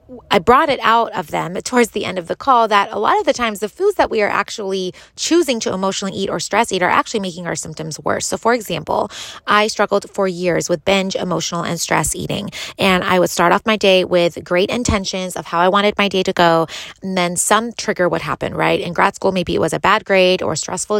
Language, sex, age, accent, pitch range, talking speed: English, female, 20-39, American, 170-215 Hz, 250 wpm